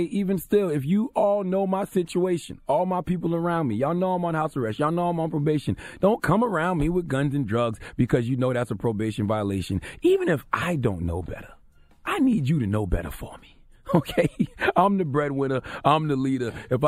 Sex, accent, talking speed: male, American, 215 wpm